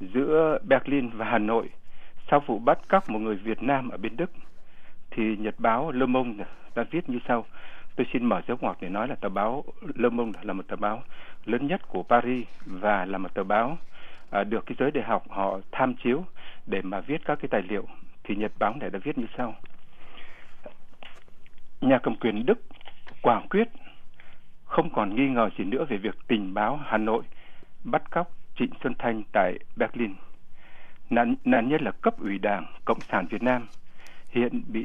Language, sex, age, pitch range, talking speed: Vietnamese, male, 60-79, 115-140 Hz, 190 wpm